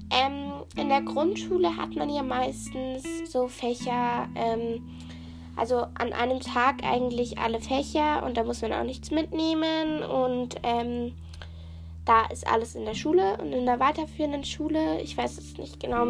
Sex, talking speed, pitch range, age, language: female, 160 wpm, 220-285 Hz, 10-29, German